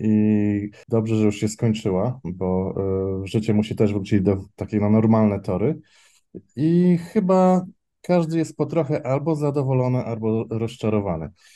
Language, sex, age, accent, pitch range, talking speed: Polish, male, 20-39, native, 105-120 Hz, 145 wpm